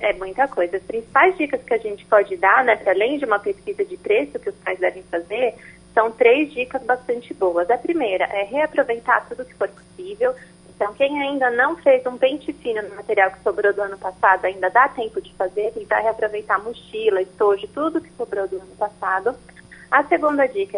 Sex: female